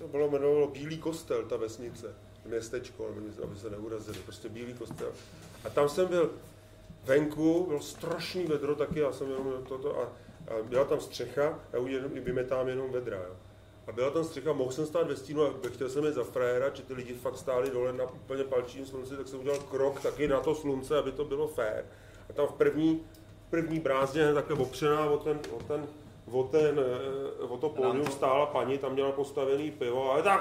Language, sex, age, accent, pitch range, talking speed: Czech, male, 30-49, native, 125-165 Hz, 200 wpm